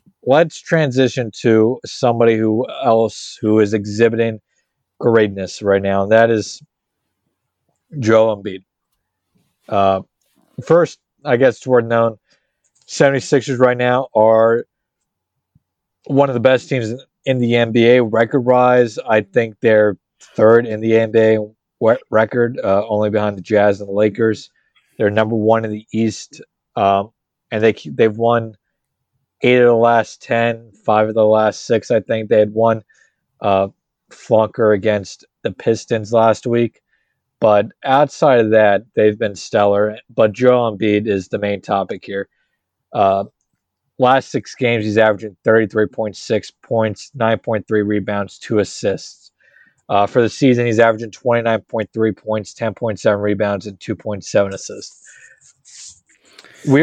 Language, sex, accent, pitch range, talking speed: English, male, American, 105-120 Hz, 135 wpm